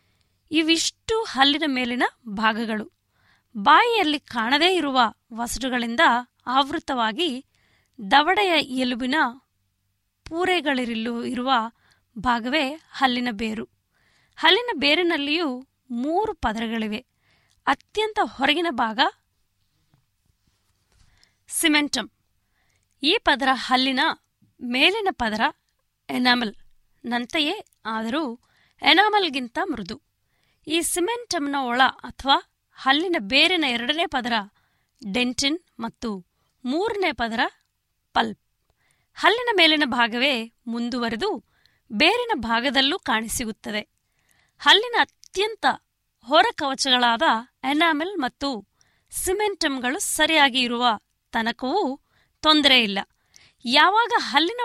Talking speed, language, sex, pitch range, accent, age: 70 wpm, Kannada, female, 235-330 Hz, native, 20-39